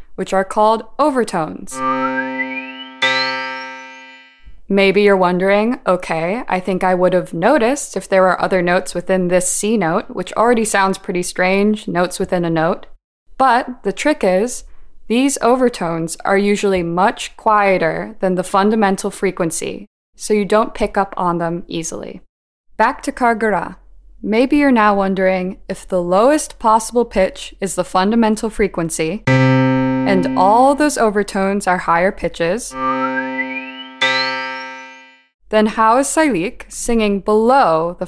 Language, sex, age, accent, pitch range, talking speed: English, female, 20-39, American, 170-215 Hz, 130 wpm